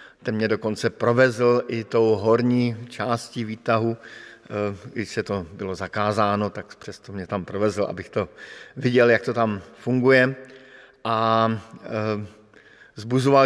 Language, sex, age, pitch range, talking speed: Slovak, male, 50-69, 110-125 Hz, 120 wpm